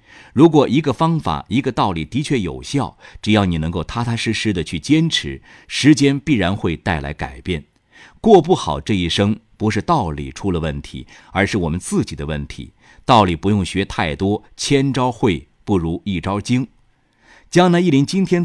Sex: male